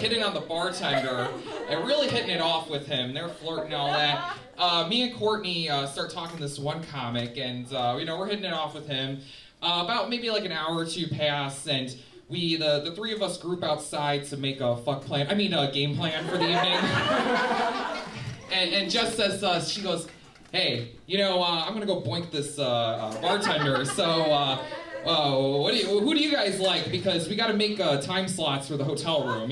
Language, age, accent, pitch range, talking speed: English, 20-39, American, 145-200 Hz, 220 wpm